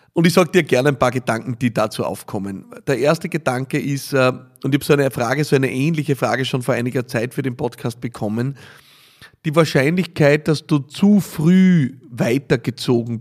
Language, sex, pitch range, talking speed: German, male, 120-140 Hz, 175 wpm